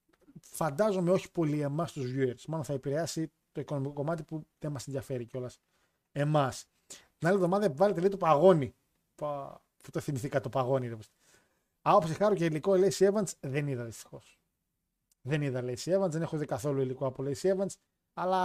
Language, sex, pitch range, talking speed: Greek, male, 135-180 Hz, 185 wpm